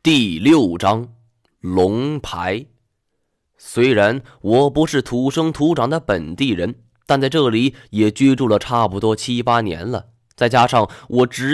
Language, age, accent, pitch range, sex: Chinese, 20-39, native, 105-140 Hz, male